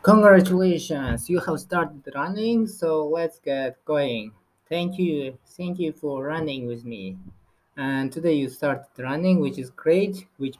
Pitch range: 125-165 Hz